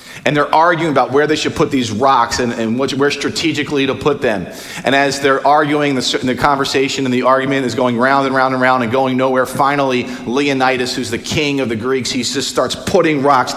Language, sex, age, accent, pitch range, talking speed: English, male, 40-59, American, 125-145 Hz, 220 wpm